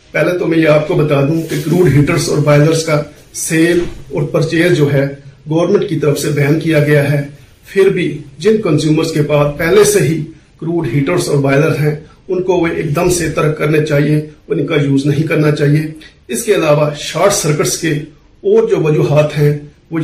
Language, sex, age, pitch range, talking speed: Urdu, male, 50-69, 145-165 Hz, 195 wpm